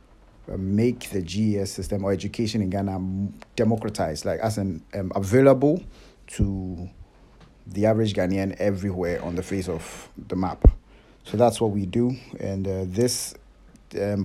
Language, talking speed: English, 145 wpm